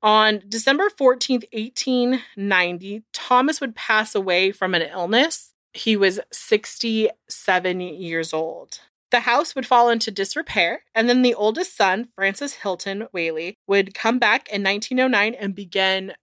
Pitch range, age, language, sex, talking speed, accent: 185-235 Hz, 30-49, English, female, 135 wpm, American